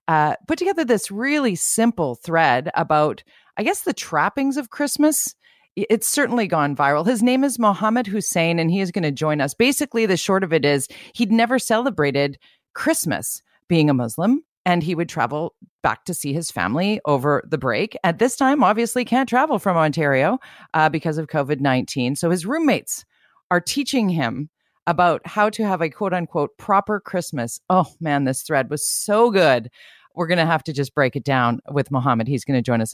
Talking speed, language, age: 190 wpm, English, 40-59